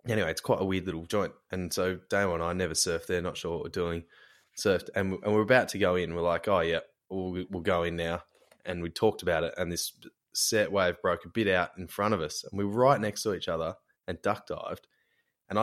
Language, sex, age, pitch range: English, male, 20-39, 90-105 Hz